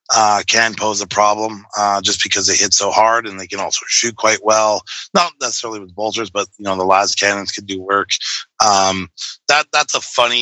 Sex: male